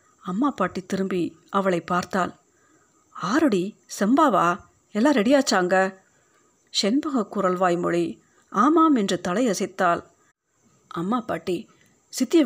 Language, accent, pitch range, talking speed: Tamil, native, 175-240 Hz, 80 wpm